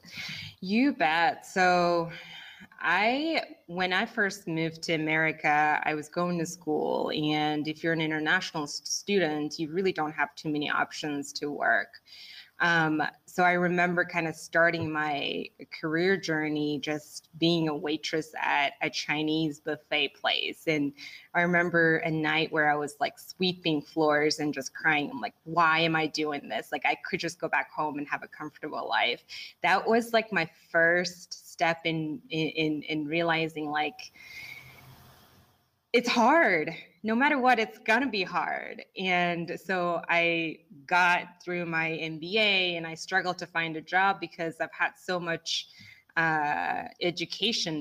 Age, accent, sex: 20-39, American, female